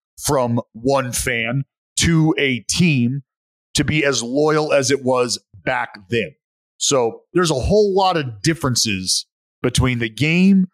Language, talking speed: English, 140 wpm